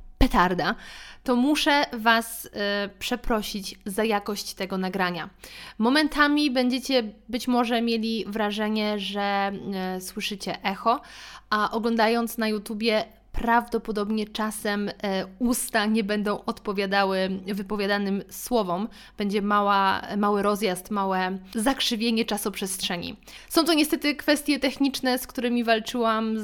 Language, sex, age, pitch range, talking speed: Polish, female, 20-39, 205-255 Hz, 100 wpm